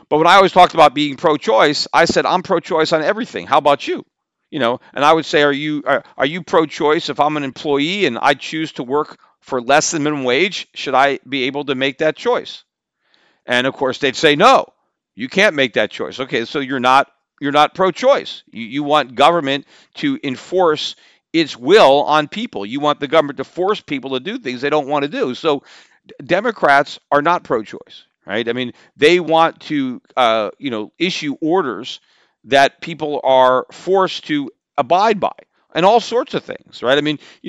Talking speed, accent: 205 wpm, American